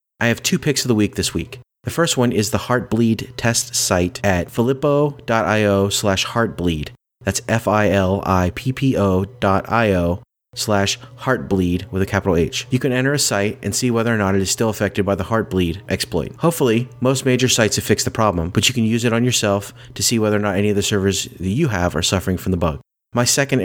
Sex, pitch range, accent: male, 95-120 Hz, American